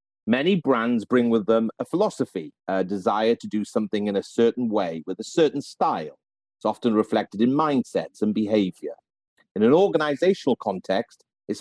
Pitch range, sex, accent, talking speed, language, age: 100-130 Hz, male, British, 165 wpm, English, 40-59